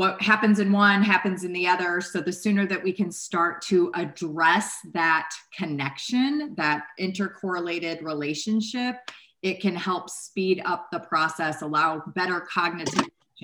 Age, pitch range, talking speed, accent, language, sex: 30-49, 160-190 Hz, 145 wpm, American, English, female